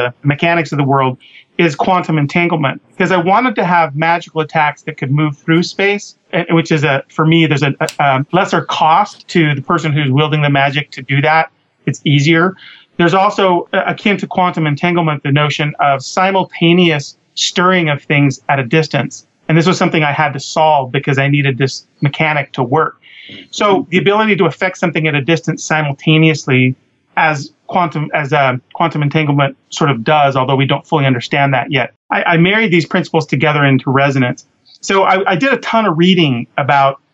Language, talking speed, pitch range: English, 190 wpm, 140-170 Hz